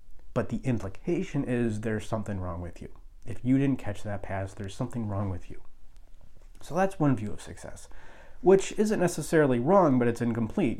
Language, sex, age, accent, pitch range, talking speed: English, male, 30-49, American, 100-125 Hz, 185 wpm